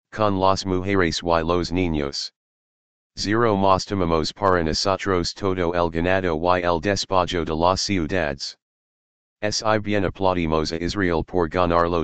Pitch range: 85-95 Hz